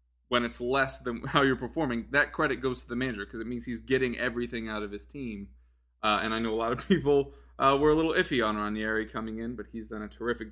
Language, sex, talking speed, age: English, male, 255 wpm, 20-39